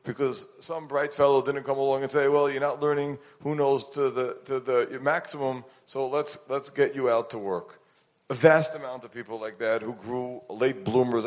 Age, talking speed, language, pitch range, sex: 40-59, 215 wpm, English, 110-140 Hz, male